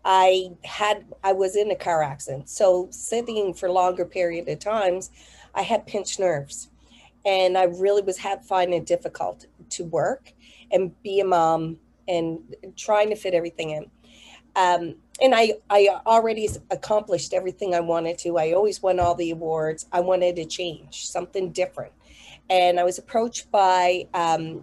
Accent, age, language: American, 40-59, English